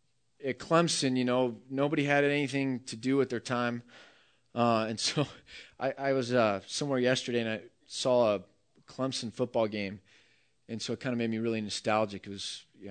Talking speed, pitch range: 185 wpm, 115-145 Hz